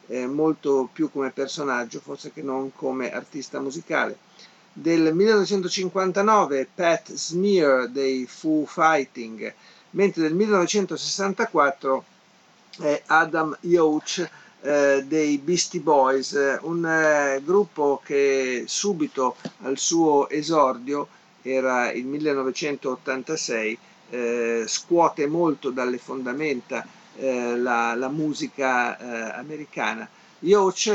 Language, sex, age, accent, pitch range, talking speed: Italian, male, 50-69, native, 130-160 Hz, 100 wpm